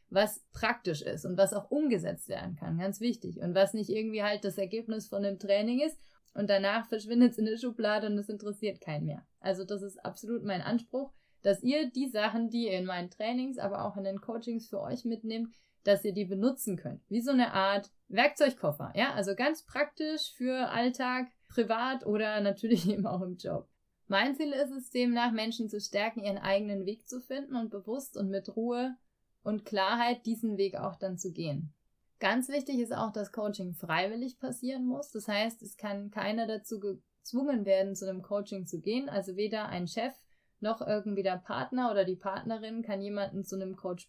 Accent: German